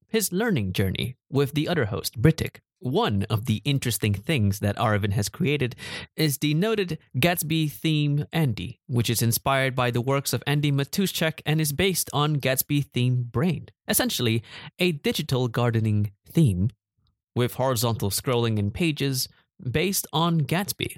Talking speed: 150 wpm